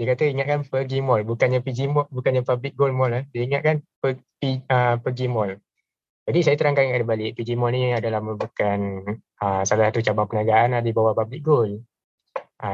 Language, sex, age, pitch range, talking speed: Malay, male, 20-39, 115-140 Hz, 185 wpm